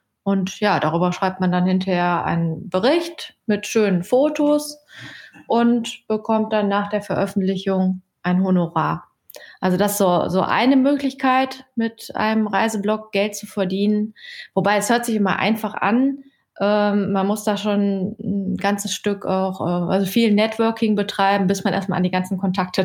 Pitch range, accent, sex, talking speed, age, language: 185-220 Hz, German, female, 160 wpm, 20-39, German